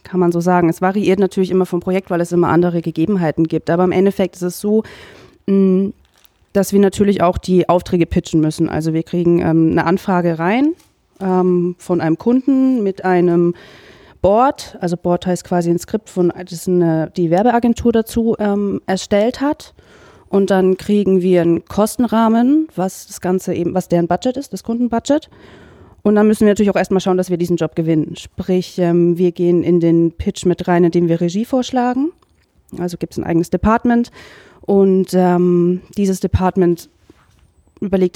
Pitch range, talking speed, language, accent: 170-205 Hz, 170 wpm, German, German